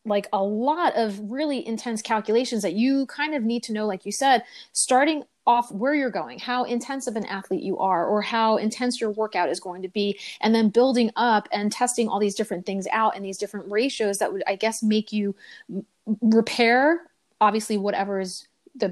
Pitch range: 195-235 Hz